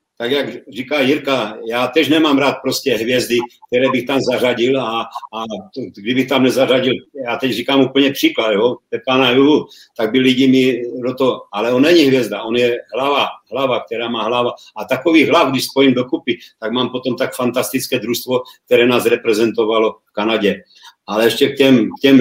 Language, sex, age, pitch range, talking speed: Czech, male, 50-69, 125-145 Hz, 185 wpm